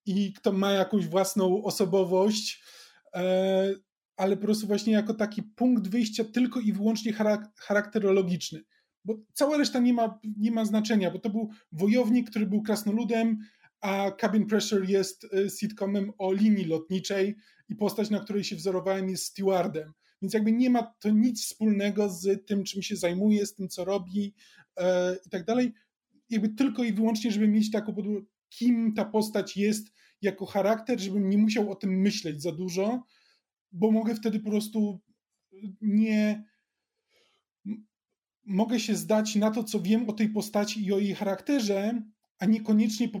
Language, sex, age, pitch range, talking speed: Polish, male, 20-39, 195-220 Hz, 155 wpm